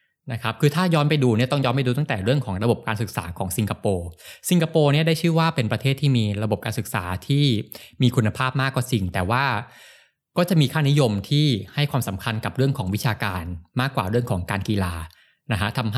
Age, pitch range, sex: 20-39, 105-135 Hz, male